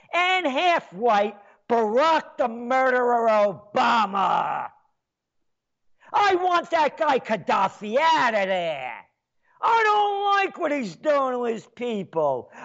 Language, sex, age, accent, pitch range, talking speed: English, male, 50-69, American, 210-310 Hz, 110 wpm